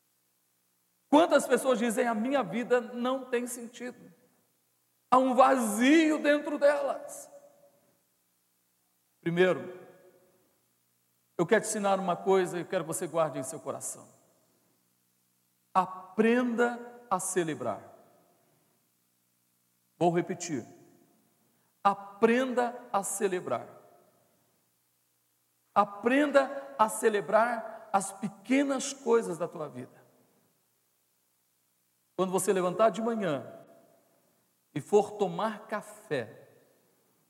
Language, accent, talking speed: Portuguese, Brazilian, 90 wpm